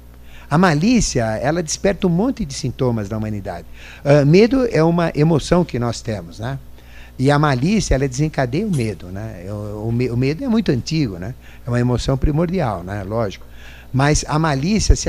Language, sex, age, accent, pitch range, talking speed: Portuguese, male, 50-69, Brazilian, 105-165 Hz, 180 wpm